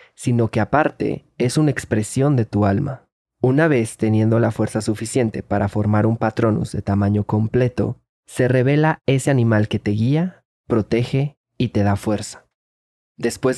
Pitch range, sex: 105-125 Hz, male